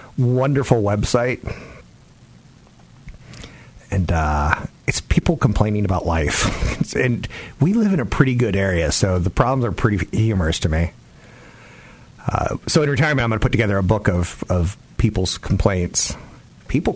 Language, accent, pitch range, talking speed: English, American, 90-125 Hz, 145 wpm